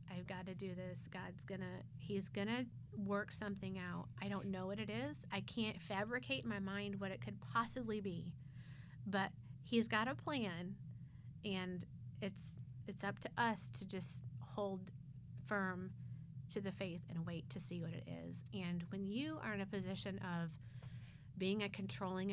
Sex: female